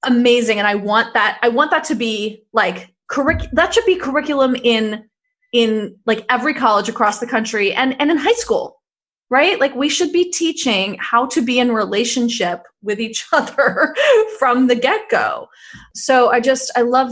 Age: 20-39